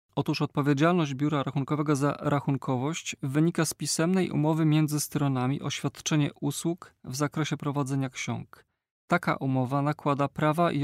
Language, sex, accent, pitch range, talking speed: Polish, male, native, 135-155 Hz, 135 wpm